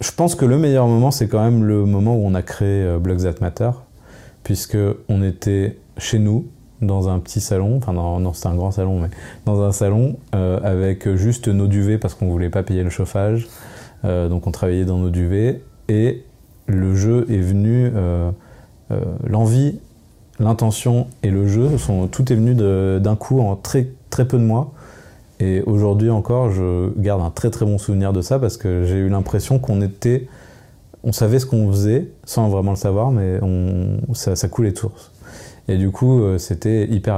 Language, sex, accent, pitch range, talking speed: French, male, French, 95-115 Hz, 195 wpm